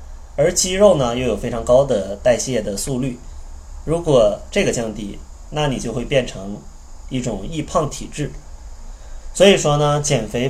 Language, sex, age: Chinese, male, 20-39